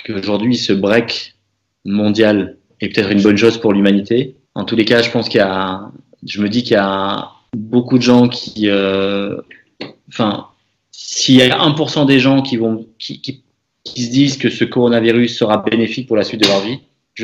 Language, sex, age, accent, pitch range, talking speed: French, male, 30-49, French, 100-120 Hz, 200 wpm